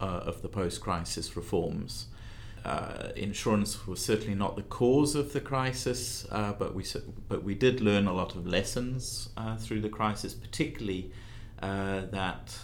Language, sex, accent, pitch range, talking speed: English, male, British, 95-115 Hz, 155 wpm